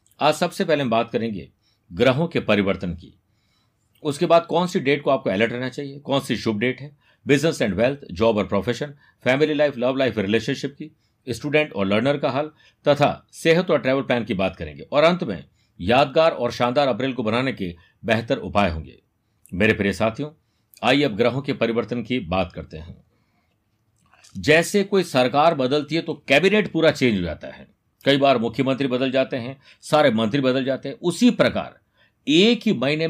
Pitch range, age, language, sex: 115-150 Hz, 50-69, Hindi, male